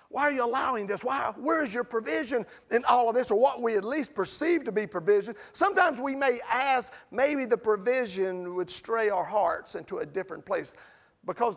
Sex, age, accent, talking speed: male, 50-69, American, 200 wpm